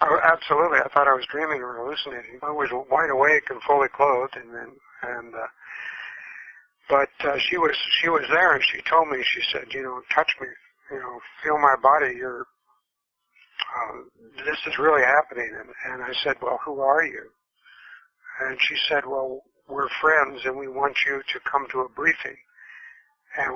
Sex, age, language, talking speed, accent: male, 60-79, English, 180 wpm, American